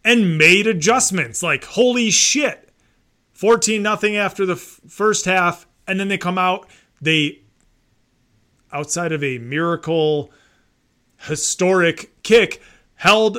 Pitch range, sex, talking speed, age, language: 125-185 Hz, male, 115 wpm, 30-49, English